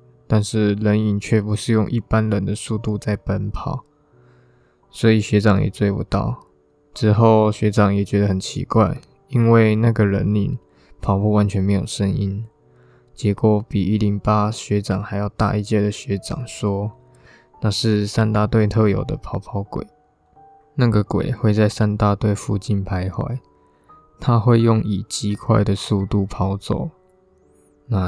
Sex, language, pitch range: male, Chinese, 100-115 Hz